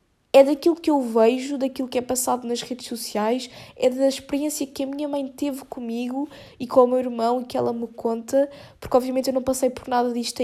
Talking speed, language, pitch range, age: 225 wpm, Portuguese, 245-300 Hz, 20-39